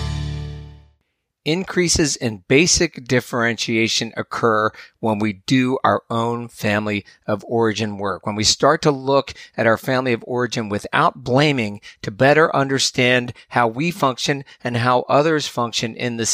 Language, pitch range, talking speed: English, 110-135 Hz, 140 wpm